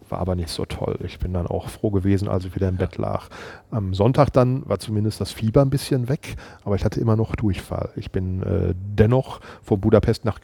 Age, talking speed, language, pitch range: 40-59, 230 wpm, German, 100-130 Hz